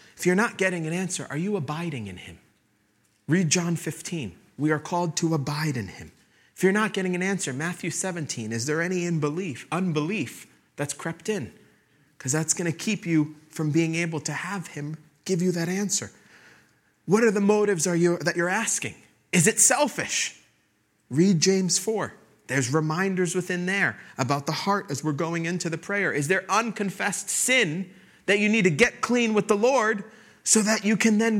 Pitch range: 155-200 Hz